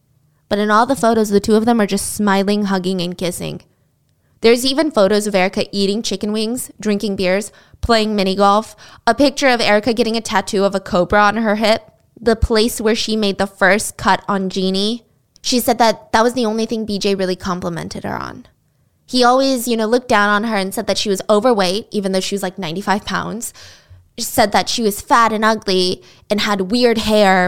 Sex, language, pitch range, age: female, English, 190-230 Hz, 20-39